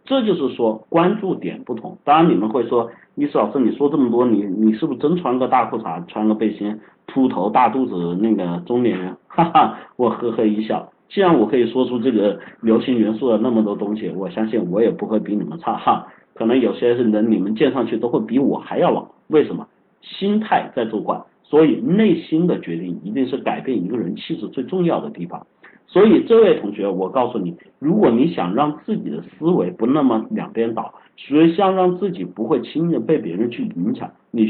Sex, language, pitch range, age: male, Chinese, 110-185 Hz, 50-69